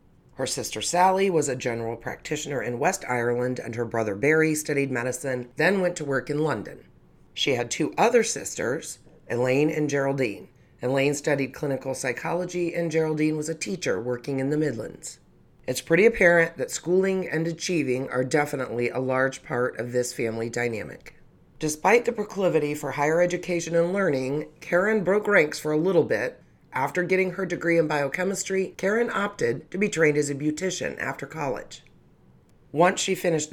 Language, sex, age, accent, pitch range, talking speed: English, female, 30-49, American, 130-170 Hz, 165 wpm